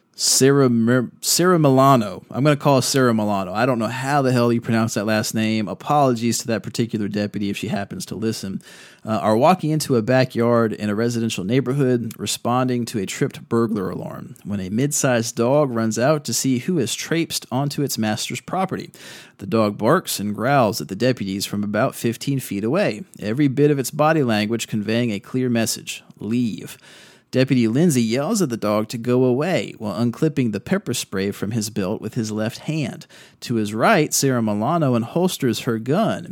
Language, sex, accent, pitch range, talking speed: English, male, American, 110-140 Hz, 195 wpm